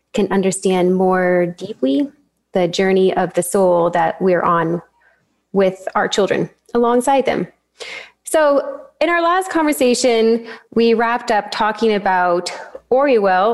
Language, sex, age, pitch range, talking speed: English, female, 20-39, 175-230 Hz, 125 wpm